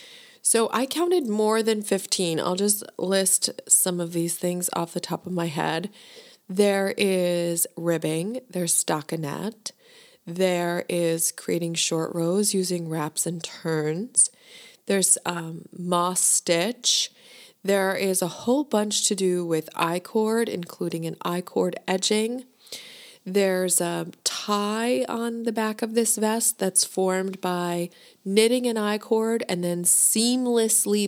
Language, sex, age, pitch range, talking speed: English, female, 30-49, 170-215 Hz, 130 wpm